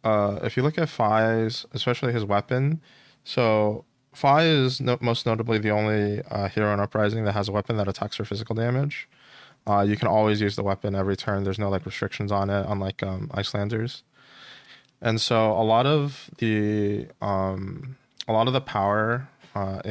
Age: 20-39